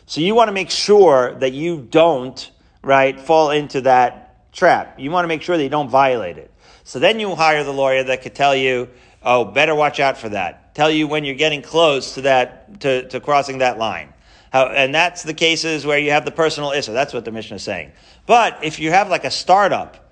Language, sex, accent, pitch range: English, male, American, 135-165 Hz